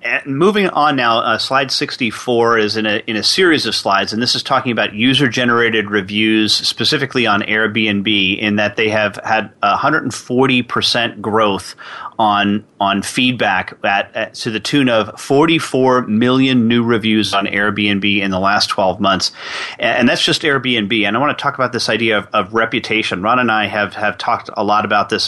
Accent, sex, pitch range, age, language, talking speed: American, male, 105-130 Hz, 30-49, English, 185 wpm